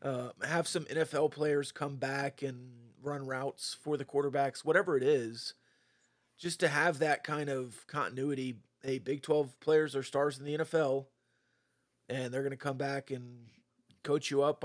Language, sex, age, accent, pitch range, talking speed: English, male, 30-49, American, 130-150 Hz, 170 wpm